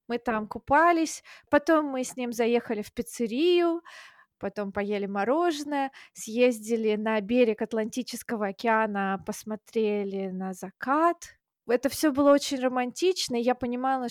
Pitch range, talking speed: 215-265 Hz, 125 wpm